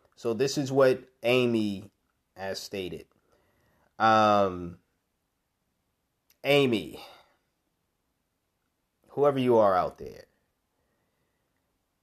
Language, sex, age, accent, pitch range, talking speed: English, male, 30-49, American, 115-145 Hz, 70 wpm